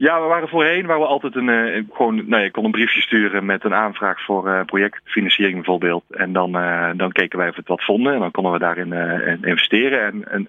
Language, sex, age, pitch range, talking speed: Dutch, male, 40-59, 90-110 Hz, 245 wpm